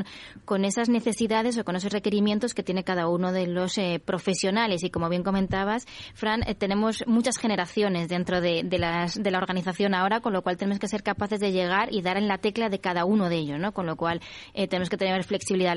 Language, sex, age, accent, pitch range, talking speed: Spanish, female, 20-39, Spanish, 175-205 Hz, 230 wpm